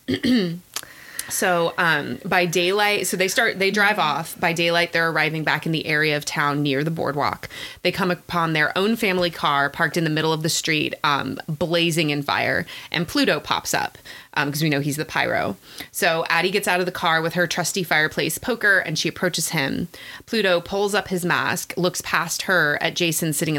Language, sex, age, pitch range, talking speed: English, female, 20-39, 150-180 Hz, 200 wpm